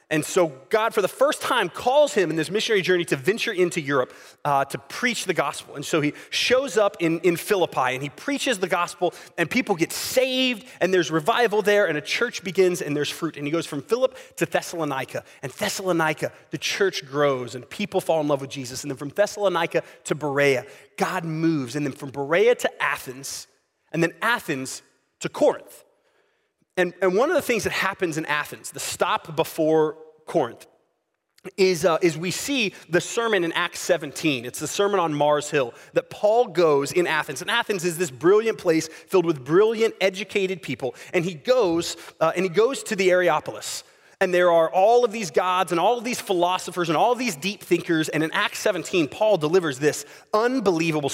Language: English